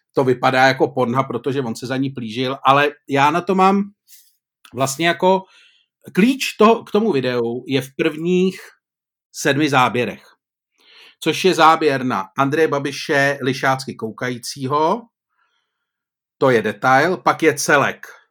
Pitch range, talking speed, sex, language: 135-185 Hz, 135 wpm, male, Czech